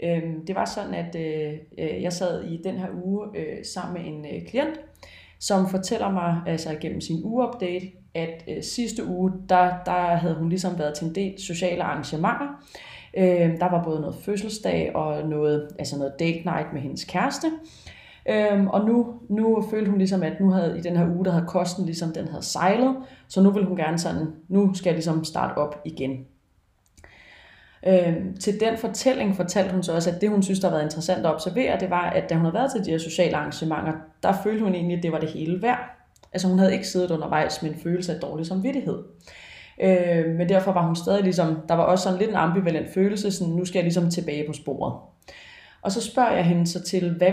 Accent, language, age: native, Danish, 30-49